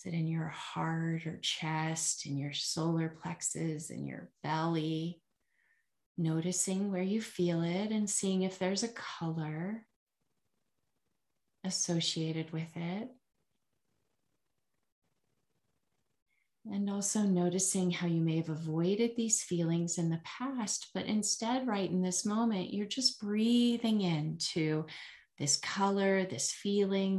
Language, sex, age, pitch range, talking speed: English, female, 30-49, 160-210 Hz, 120 wpm